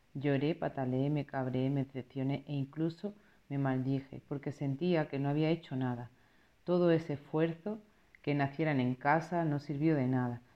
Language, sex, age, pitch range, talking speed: Spanish, female, 40-59, 135-160 Hz, 160 wpm